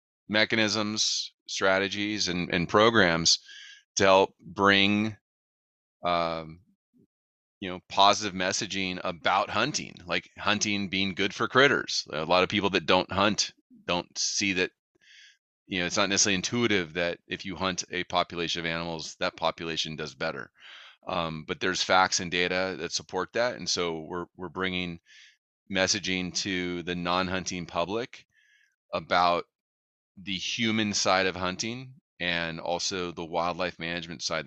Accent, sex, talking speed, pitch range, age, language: American, male, 140 wpm, 85-105 Hz, 30-49, English